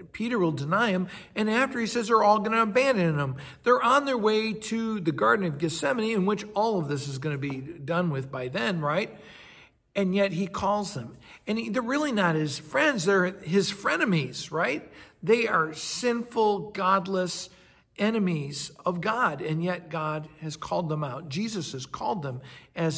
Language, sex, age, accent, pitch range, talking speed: English, male, 60-79, American, 150-205 Hz, 190 wpm